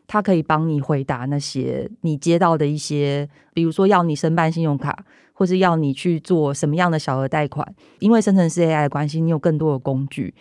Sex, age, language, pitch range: female, 30-49, Chinese, 150-190 Hz